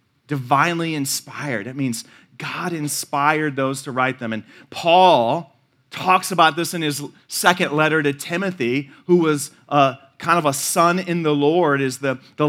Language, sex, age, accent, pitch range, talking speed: English, male, 30-49, American, 140-180 Hz, 160 wpm